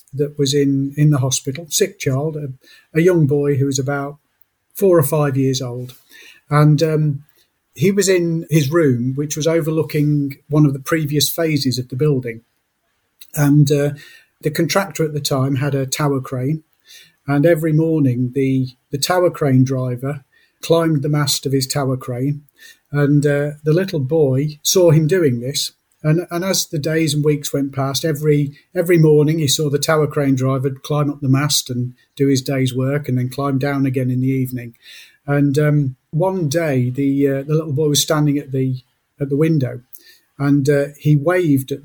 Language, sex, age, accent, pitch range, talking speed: English, male, 40-59, British, 135-155 Hz, 185 wpm